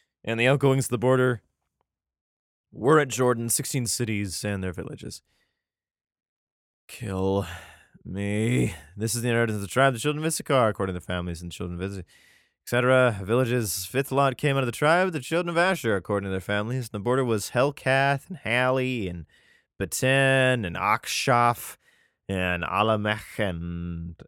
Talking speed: 165 wpm